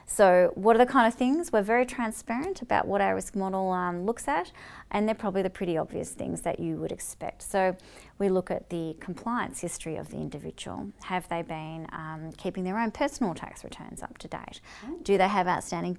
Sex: female